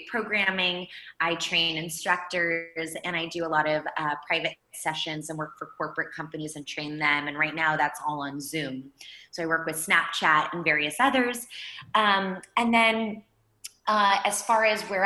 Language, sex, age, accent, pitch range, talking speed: English, female, 20-39, American, 160-195 Hz, 175 wpm